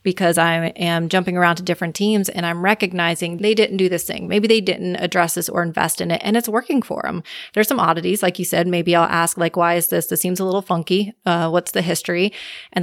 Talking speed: 250 wpm